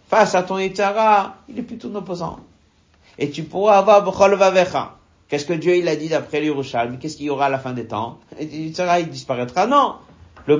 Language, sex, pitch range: French, male, 135-180 Hz